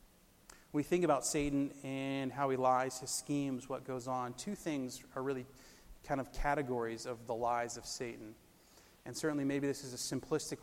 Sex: male